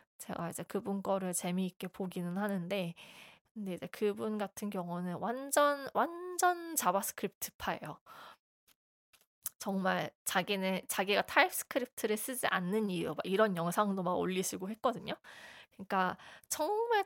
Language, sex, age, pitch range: Korean, female, 20-39, 185-240 Hz